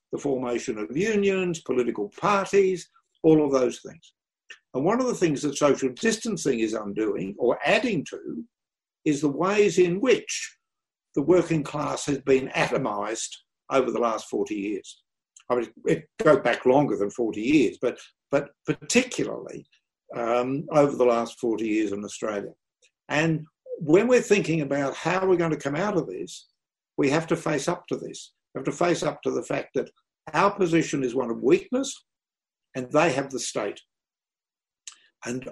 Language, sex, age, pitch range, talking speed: English, male, 60-79, 140-200 Hz, 165 wpm